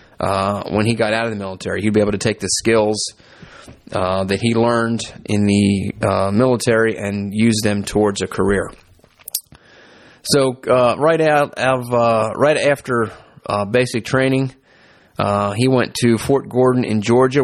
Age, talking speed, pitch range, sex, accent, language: 30-49, 165 wpm, 105-130 Hz, male, American, English